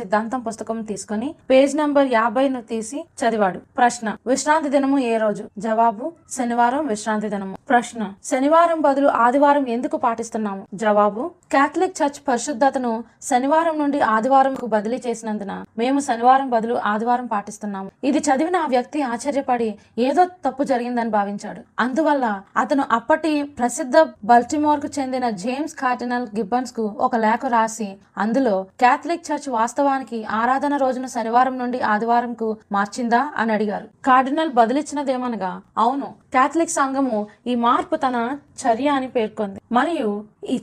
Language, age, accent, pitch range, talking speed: Telugu, 20-39, native, 225-280 Hz, 115 wpm